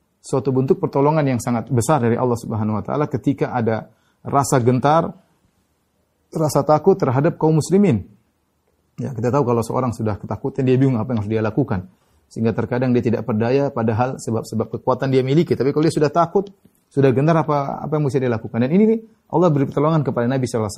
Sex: male